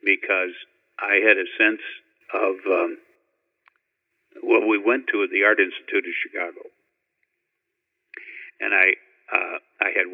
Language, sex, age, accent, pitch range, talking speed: English, male, 60-79, American, 350-415 Hz, 125 wpm